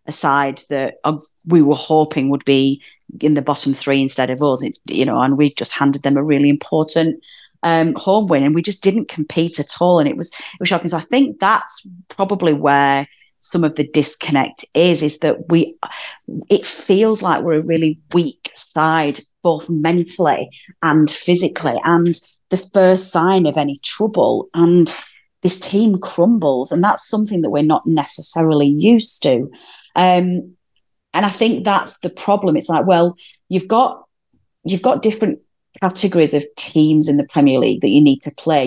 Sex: female